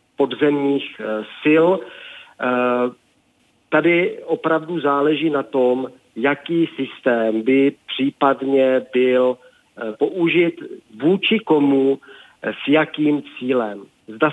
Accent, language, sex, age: native, Czech, male, 40-59